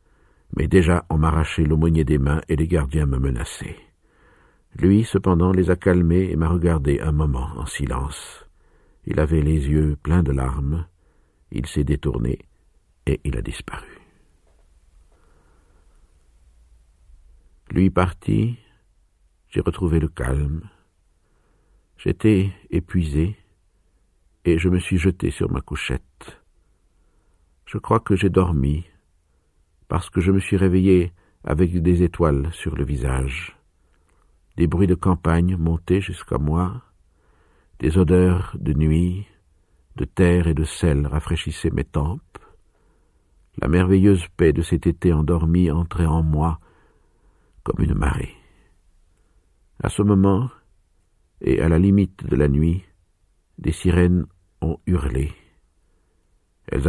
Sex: male